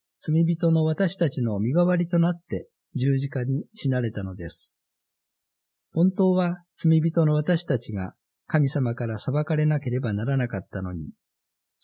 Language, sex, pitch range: Japanese, male, 120-160 Hz